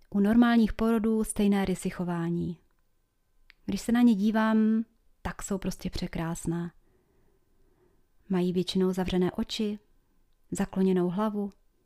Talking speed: 100 wpm